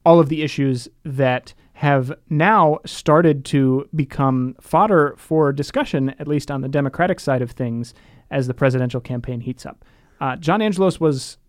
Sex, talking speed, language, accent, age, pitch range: male, 160 wpm, English, American, 30-49, 135-180 Hz